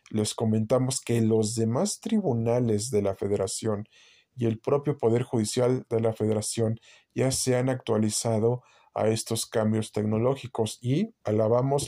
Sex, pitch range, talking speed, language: male, 110-125 Hz, 135 wpm, Spanish